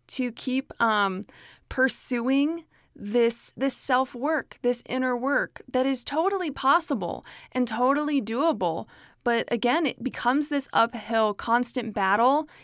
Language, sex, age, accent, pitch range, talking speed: English, female, 20-39, American, 210-265 Hz, 120 wpm